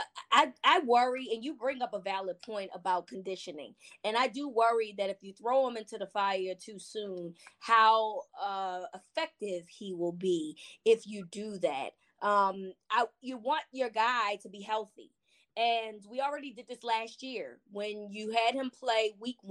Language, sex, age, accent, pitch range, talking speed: English, female, 20-39, American, 205-270 Hz, 175 wpm